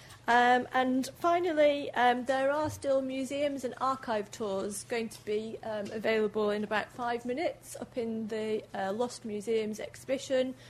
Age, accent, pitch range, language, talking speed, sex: 40-59, British, 210-250 Hz, English, 150 wpm, female